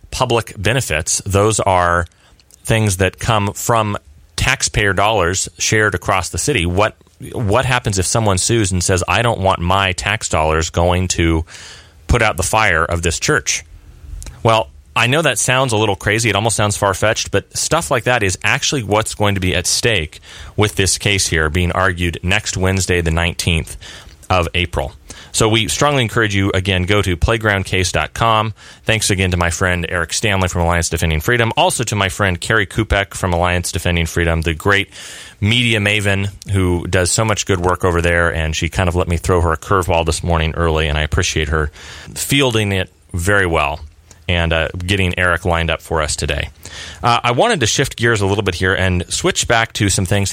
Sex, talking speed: male, 190 wpm